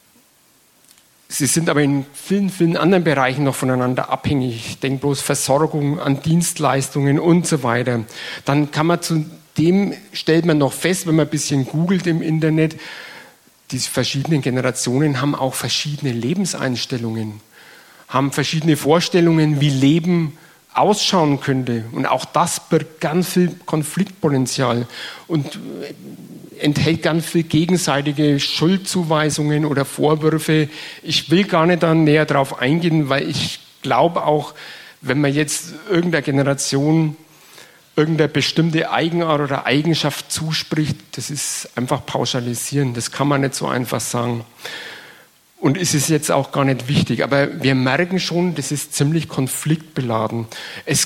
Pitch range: 135-160 Hz